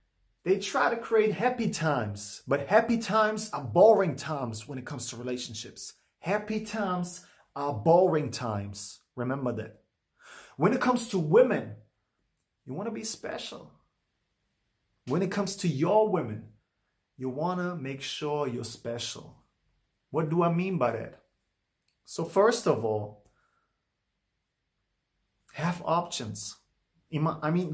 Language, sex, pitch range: English, male, 120-175 Hz